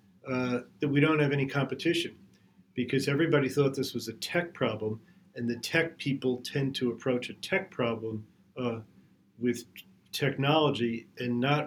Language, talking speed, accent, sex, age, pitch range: English, 155 wpm, American, male, 40-59, 120-140 Hz